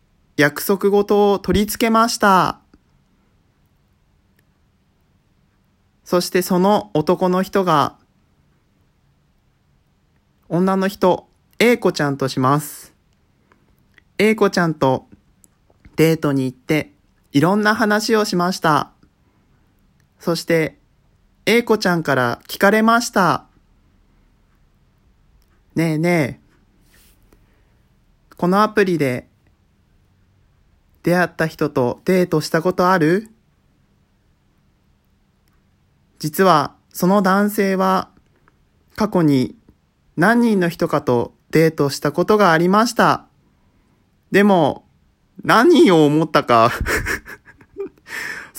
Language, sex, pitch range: Japanese, male, 130-195 Hz